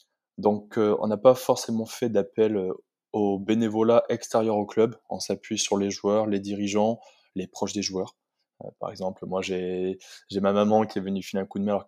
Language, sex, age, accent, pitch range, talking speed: French, male, 20-39, French, 100-115 Hz, 200 wpm